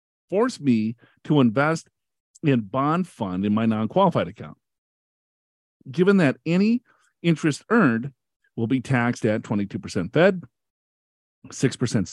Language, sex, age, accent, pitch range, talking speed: English, male, 50-69, American, 120-180 Hz, 115 wpm